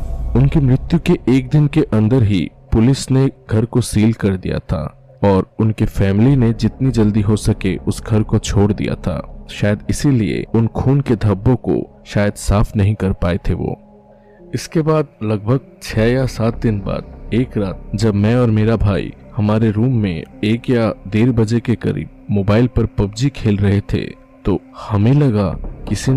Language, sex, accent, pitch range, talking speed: Hindi, male, native, 105-130 Hz, 180 wpm